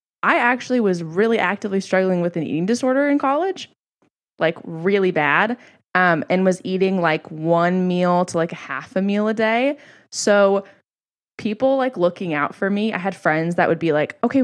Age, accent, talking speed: 20-39, American, 185 wpm